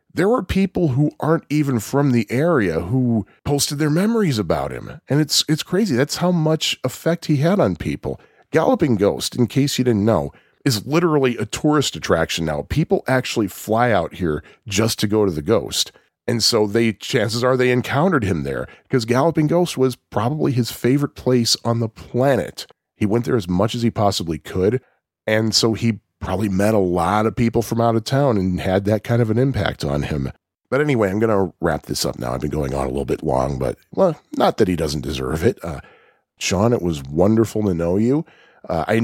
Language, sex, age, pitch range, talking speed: English, male, 40-59, 85-130 Hz, 210 wpm